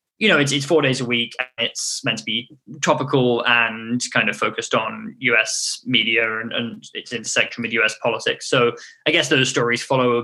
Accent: British